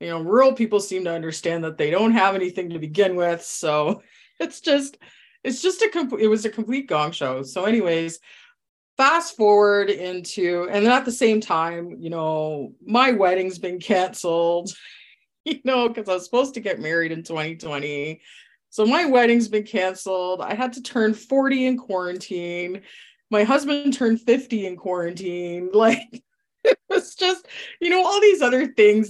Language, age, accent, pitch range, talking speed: English, 30-49, American, 170-240 Hz, 170 wpm